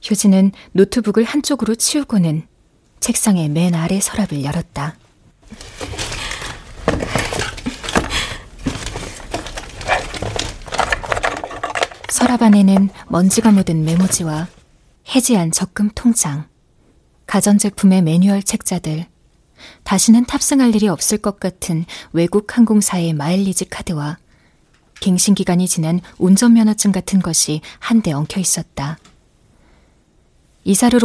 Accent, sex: native, female